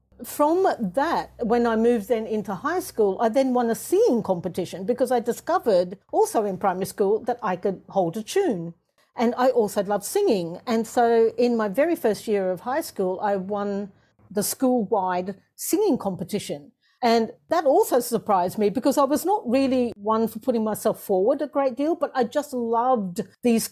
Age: 50-69